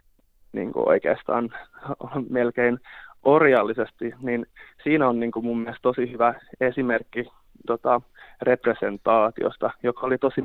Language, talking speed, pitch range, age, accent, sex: Finnish, 105 wpm, 115-130 Hz, 20-39, native, male